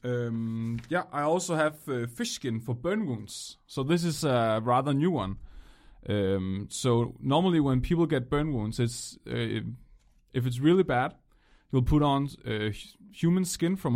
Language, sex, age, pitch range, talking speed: English, male, 30-49, 115-145 Hz, 165 wpm